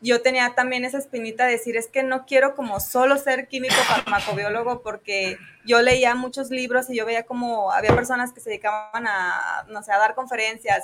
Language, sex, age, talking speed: Spanish, female, 20-39, 200 wpm